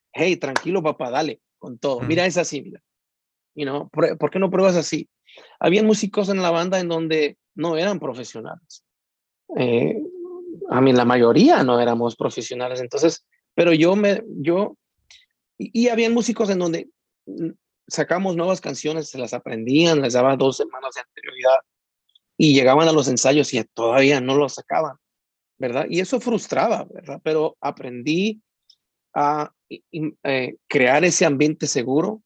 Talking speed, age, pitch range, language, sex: 150 wpm, 30-49, 135-185 Hz, Spanish, male